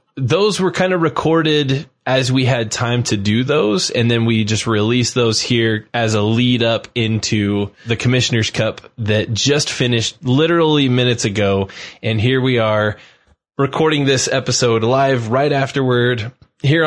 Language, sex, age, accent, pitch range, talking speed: English, male, 20-39, American, 115-140 Hz, 155 wpm